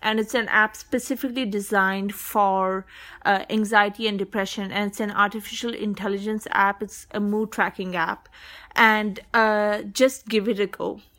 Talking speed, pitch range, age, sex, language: 155 wpm, 195-220 Hz, 30-49, female, English